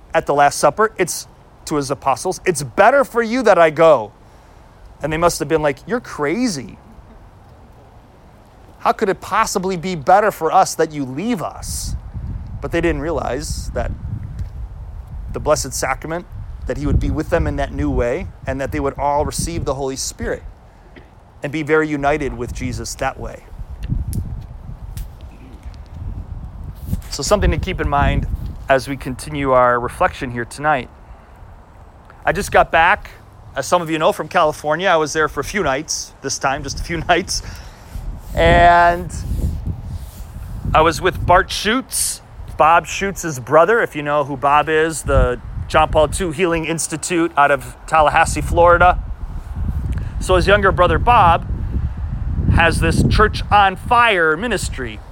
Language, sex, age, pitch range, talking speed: English, male, 30-49, 100-165 Hz, 155 wpm